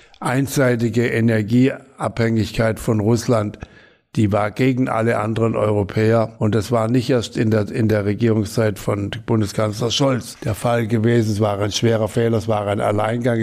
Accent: German